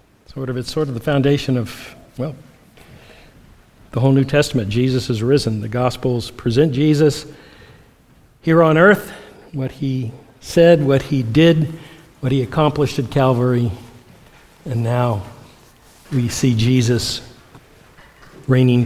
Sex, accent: male, American